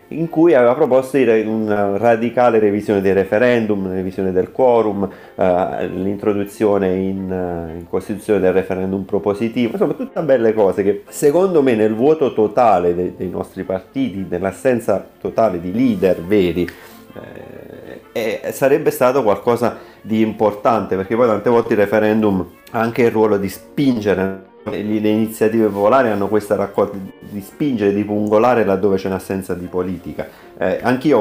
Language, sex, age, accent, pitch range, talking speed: Italian, male, 30-49, native, 95-115 Hz, 150 wpm